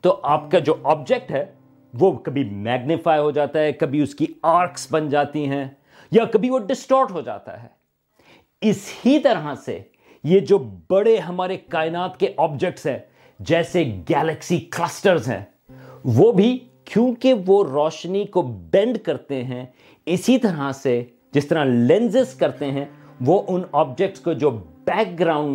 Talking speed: 155 wpm